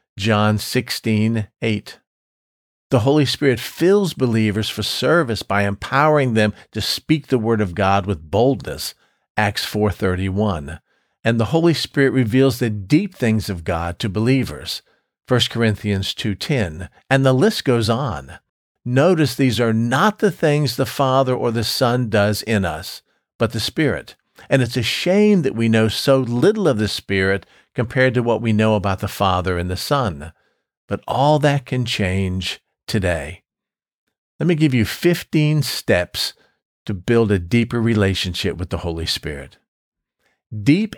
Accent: American